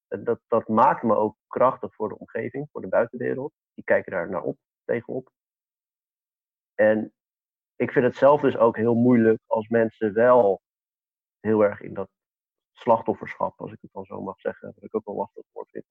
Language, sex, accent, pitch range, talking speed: Dutch, male, Dutch, 105-120 Hz, 185 wpm